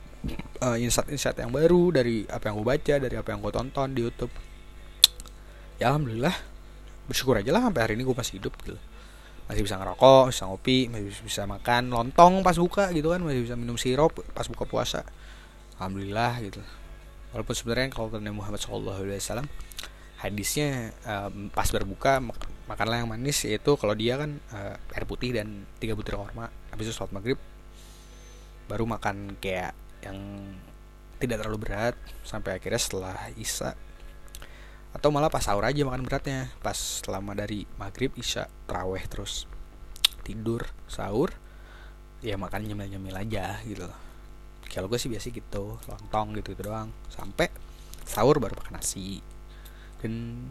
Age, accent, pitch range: 20-39, native, 95-120 Hz